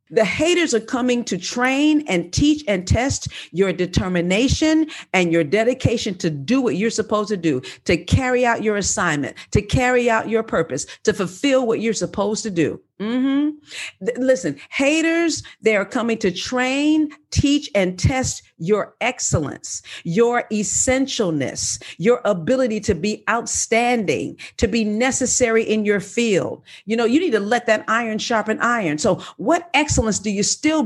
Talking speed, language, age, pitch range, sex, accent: 160 wpm, English, 50-69, 180-250 Hz, female, American